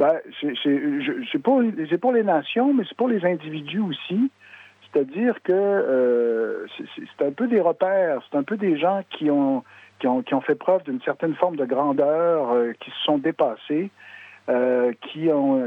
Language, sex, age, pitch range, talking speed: French, male, 60-79, 130-215 Hz, 190 wpm